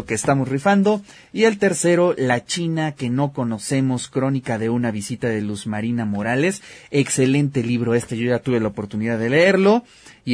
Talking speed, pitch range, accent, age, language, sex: 175 wpm, 115-160 Hz, Mexican, 30-49, Spanish, male